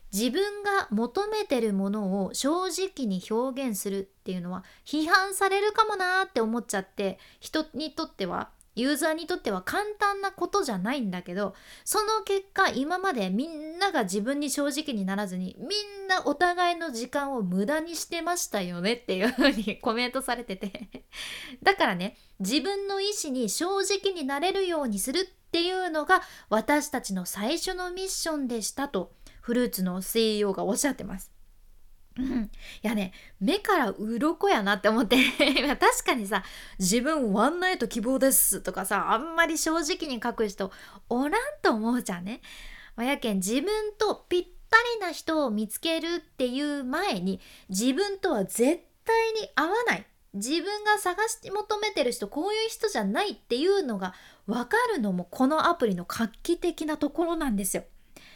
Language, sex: Japanese, female